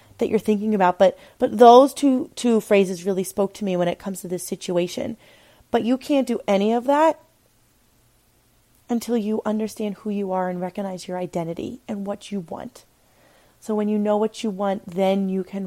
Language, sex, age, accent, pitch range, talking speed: English, female, 30-49, American, 190-235 Hz, 195 wpm